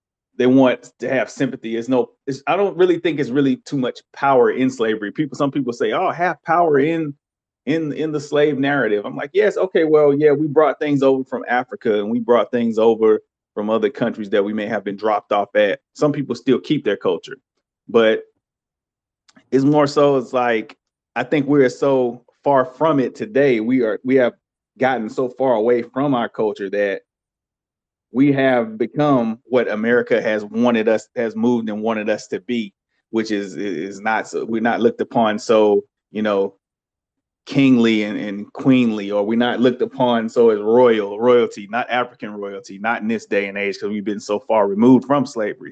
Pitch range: 110-140 Hz